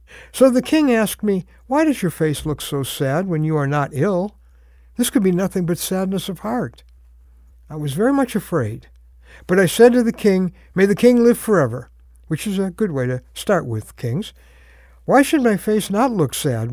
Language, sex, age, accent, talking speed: English, male, 60-79, American, 205 wpm